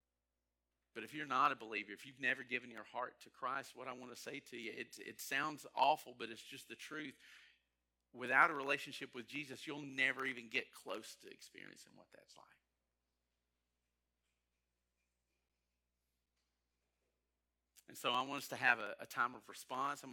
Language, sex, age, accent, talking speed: English, male, 40-59, American, 175 wpm